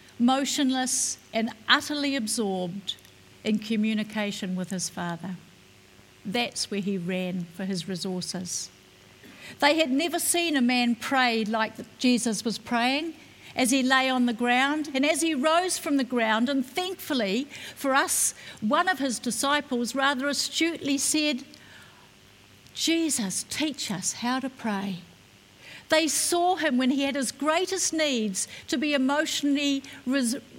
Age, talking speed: 50-69, 135 wpm